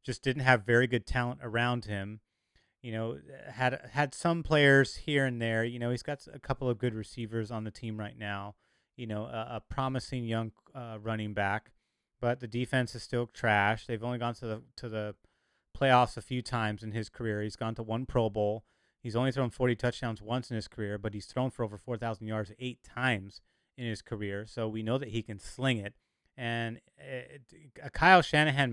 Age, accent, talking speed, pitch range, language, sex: 30-49, American, 210 wpm, 110-130 Hz, English, male